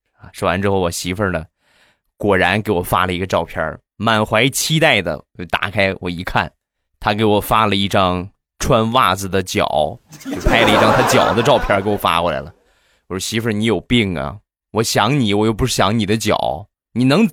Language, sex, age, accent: Chinese, male, 20-39, native